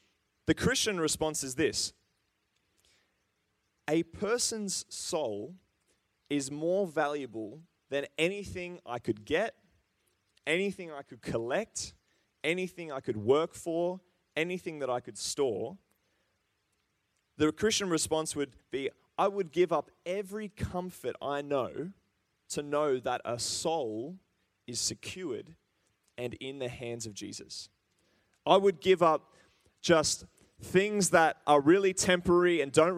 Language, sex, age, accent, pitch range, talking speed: English, male, 20-39, Australian, 115-160 Hz, 125 wpm